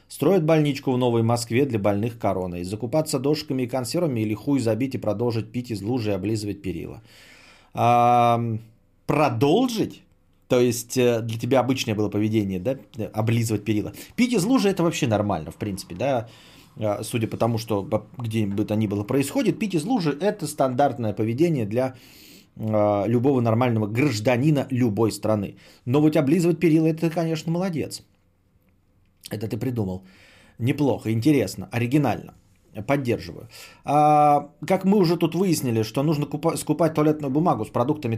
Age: 30-49